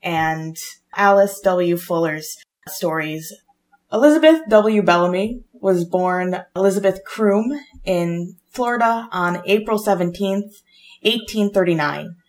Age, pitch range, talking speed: 20-39, 175-205 Hz, 90 wpm